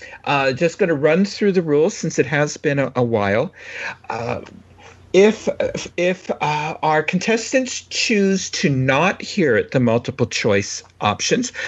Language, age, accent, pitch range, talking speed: English, 50-69, American, 135-195 Hz, 150 wpm